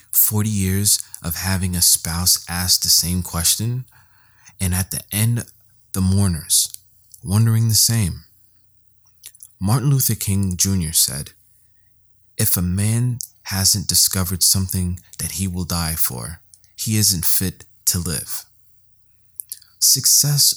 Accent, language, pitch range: American, English, 90-110 Hz